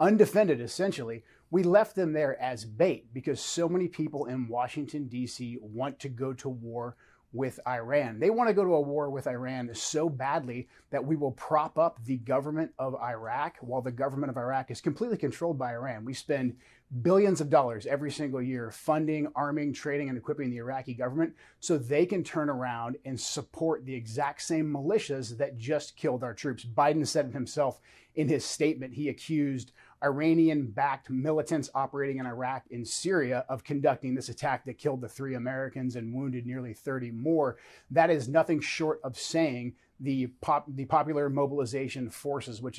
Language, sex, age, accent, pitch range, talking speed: English, male, 30-49, American, 125-155 Hz, 180 wpm